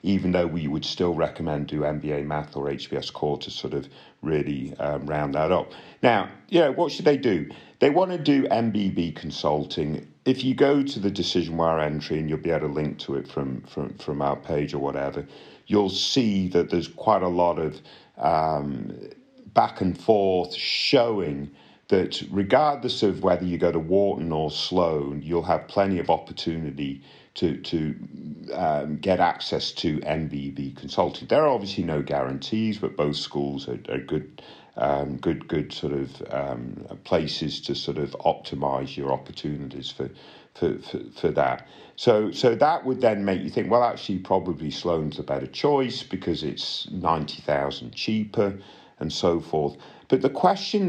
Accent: British